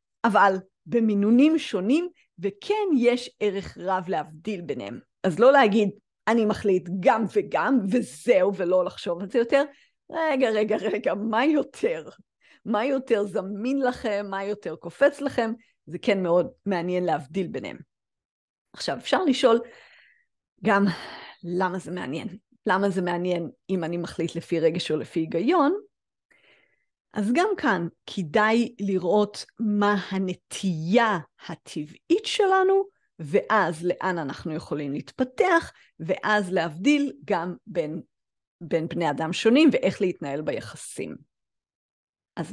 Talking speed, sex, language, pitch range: 120 wpm, female, Hebrew, 180-250 Hz